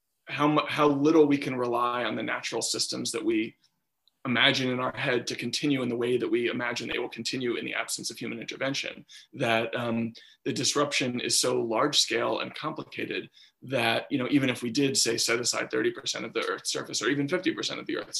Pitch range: 125-150 Hz